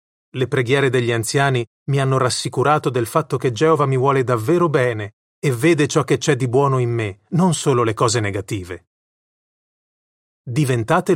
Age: 30-49